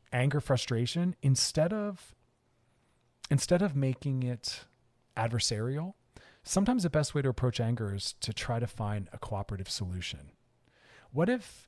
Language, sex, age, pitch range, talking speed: English, male, 40-59, 105-130 Hz, 135 wpm